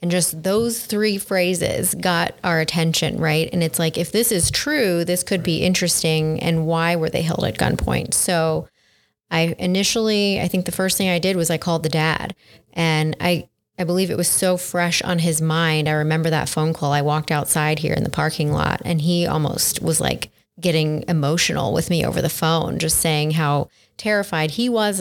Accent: American